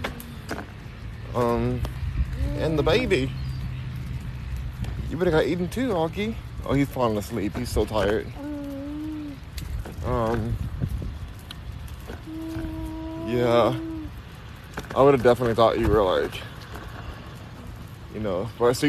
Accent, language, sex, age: American, English, male, 20-39